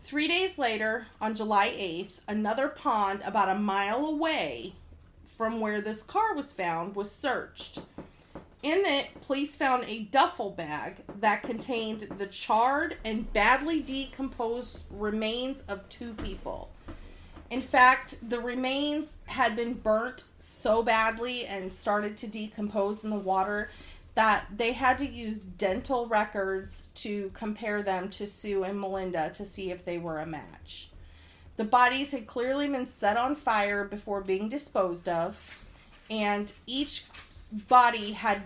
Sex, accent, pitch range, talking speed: female, American, 195-250 Hz, 140 wpm